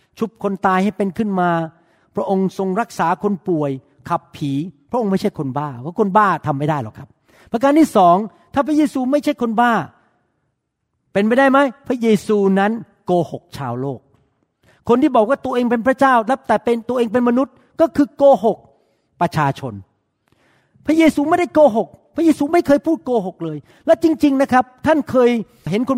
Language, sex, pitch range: Thai, male, 165-240 Hz